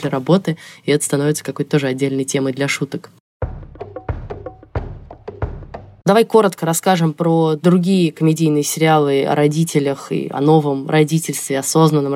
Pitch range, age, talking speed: 150-180 Hz, 20-39, 125 wpm